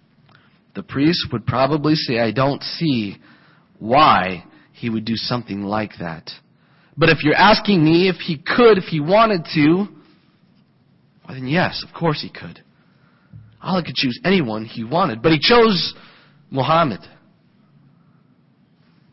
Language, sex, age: English, male, 30-49